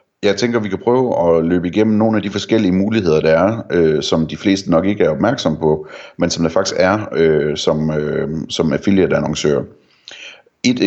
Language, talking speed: Danish, 205 wpm